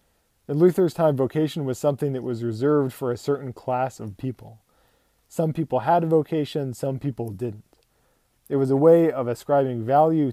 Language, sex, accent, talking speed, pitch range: English, male, American, 175 wpm, 120-150 Hz